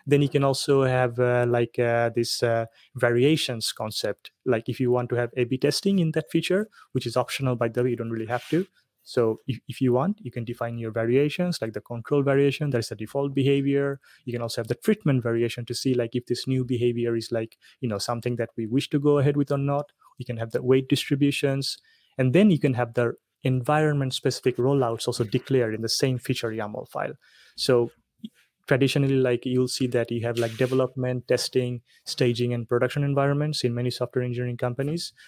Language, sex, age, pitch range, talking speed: Polish, male, 20-39, 120-140 Hz, 210 wpm